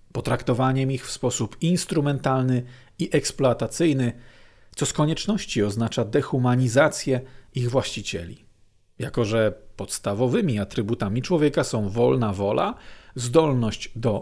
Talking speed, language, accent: 100 wpm, Polish, native